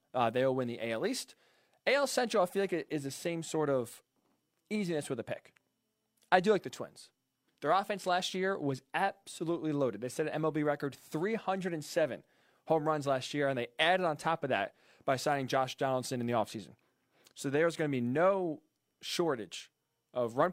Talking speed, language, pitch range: 195 wpm, English, 130-165 Hz